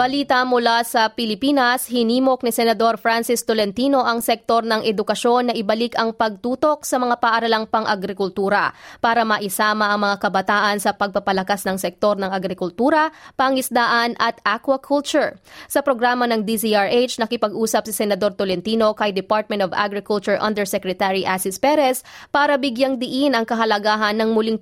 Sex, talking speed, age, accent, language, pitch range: female, 140 wpm, 20-39, native, Filipino, 205-245 Hz